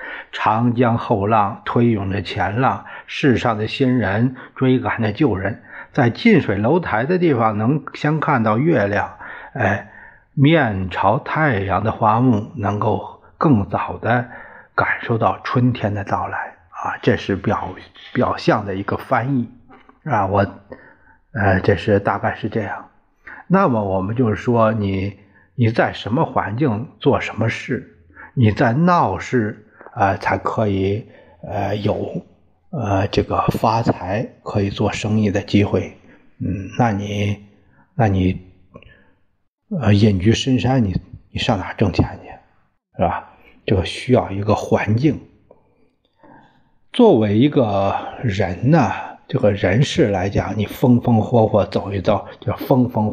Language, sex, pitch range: Chinese, male, 100-125 Hz